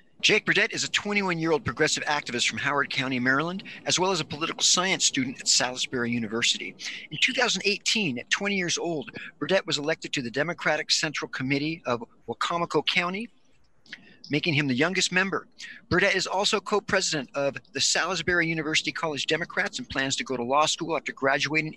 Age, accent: 50-69, American